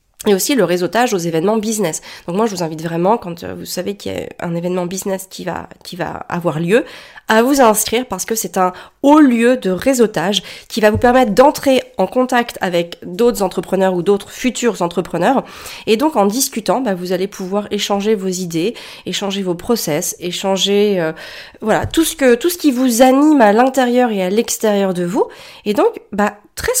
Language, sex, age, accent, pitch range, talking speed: French, female, 30-49, French, 180-240 Hz, 200 wpm